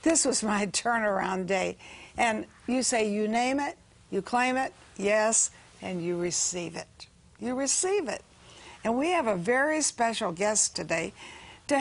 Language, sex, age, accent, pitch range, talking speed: English, female, 60-79, American, 210-275 Hz, 160 wpm